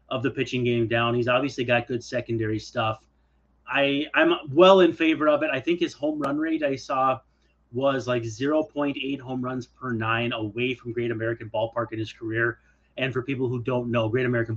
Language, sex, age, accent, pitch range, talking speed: English, male, 30-49, American, 115-145 Hz, 200 wpm